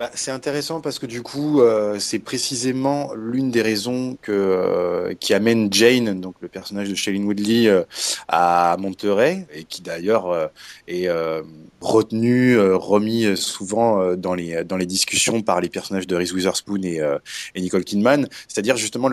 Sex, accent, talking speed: male, French, 175 wpm